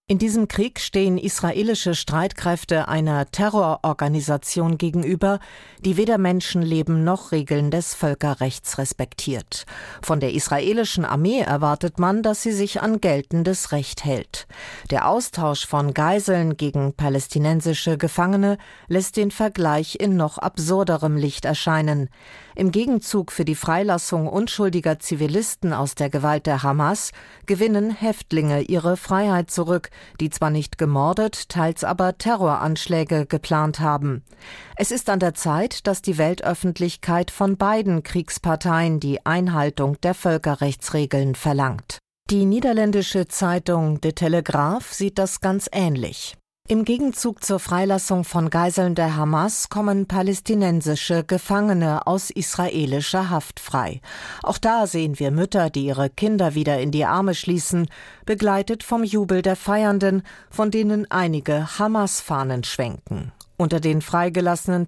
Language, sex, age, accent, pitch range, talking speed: German, female, 40-59, German, 155-195 Hz, 125 wpm